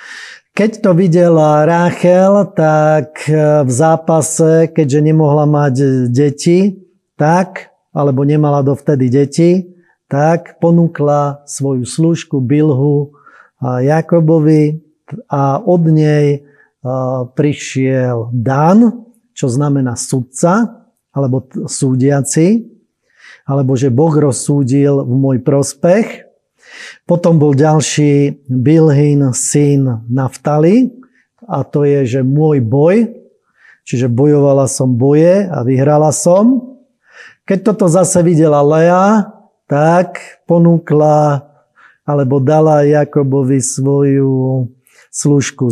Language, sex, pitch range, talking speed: Slovak, male, 140-175 Hz, 90 wpm